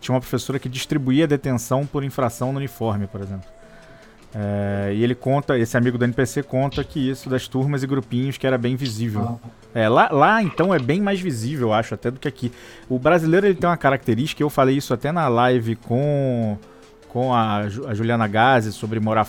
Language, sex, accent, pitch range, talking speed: Portuguese, male, Brazilian, 110-135 Hz, 195 wpm